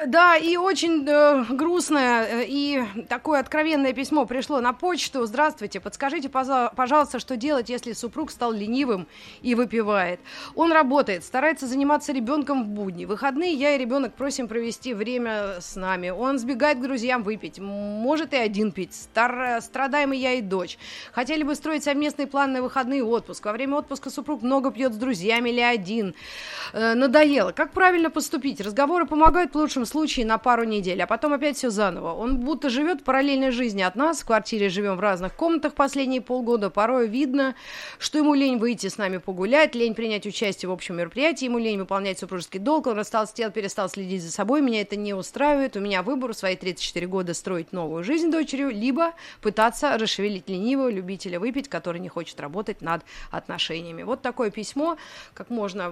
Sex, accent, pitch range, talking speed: female, native, 205-285 Hz, 175 wpm